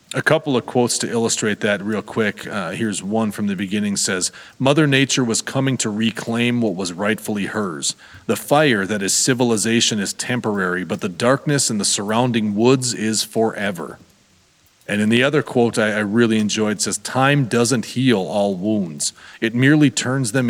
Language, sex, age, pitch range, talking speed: English, male, 40-59, 105-130 Hz, 180 wpm